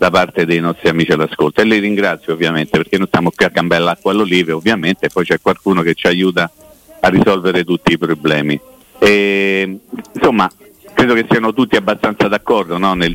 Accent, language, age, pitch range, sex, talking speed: native, Italian, 50-69, 90-110 Hz, male, 185 wpm